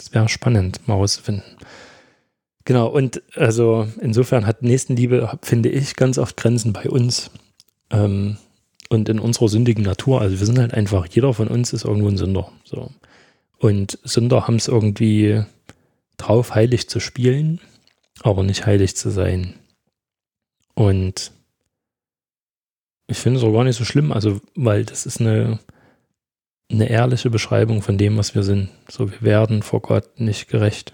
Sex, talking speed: male, 150 wpm